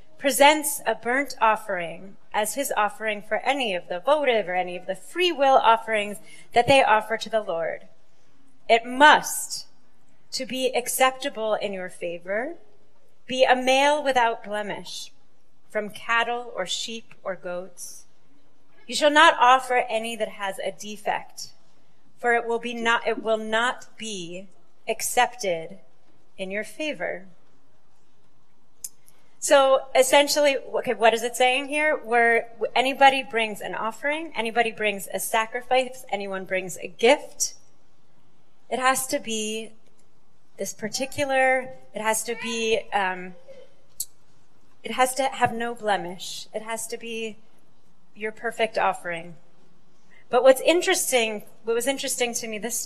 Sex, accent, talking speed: female, American, 135 wpm